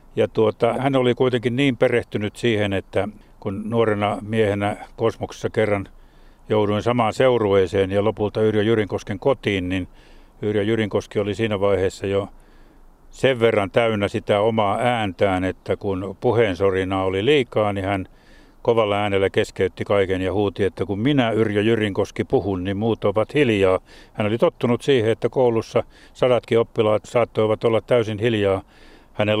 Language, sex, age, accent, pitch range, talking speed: Finnish, male, 60-79, native, 100-115 Hz, 145 wpm